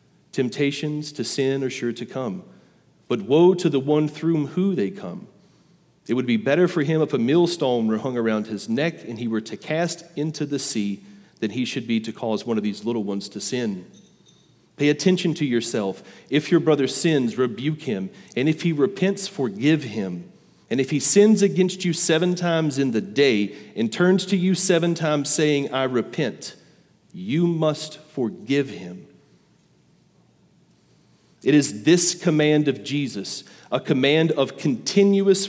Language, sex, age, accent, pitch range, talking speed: English, male, 40-59, American, 125-170 Hz, 170 wpm